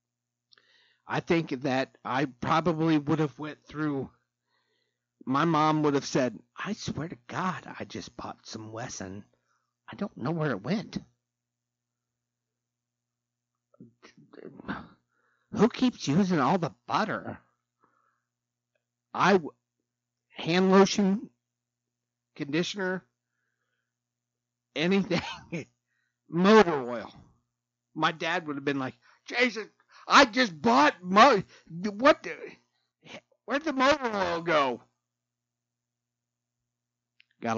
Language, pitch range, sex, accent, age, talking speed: English, 120-165 Hz, male, American, 50-69, 95 wpm